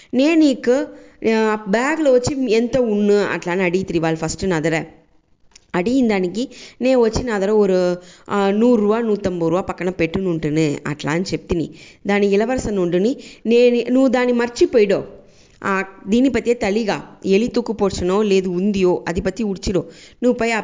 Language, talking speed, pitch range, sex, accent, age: English, 125 wpm, 180-245 Hz, female, Indian, 20-39